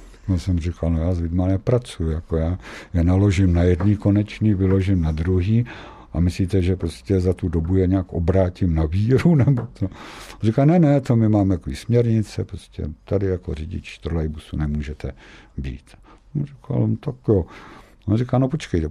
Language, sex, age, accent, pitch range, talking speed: Czech, male, 60-79, native, 85-110 Hz, 165 wpm